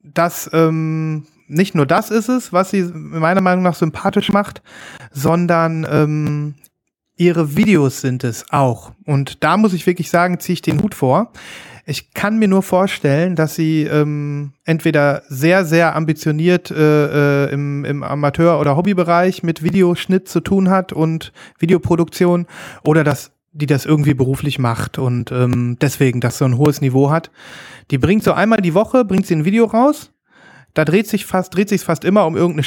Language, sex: German, male